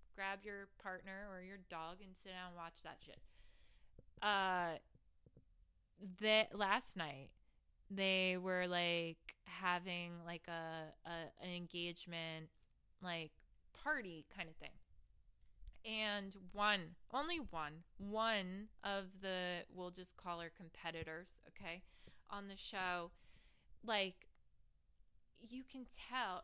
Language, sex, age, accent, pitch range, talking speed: English, female, 20-39, American, 170-210 Hz, 115 wpm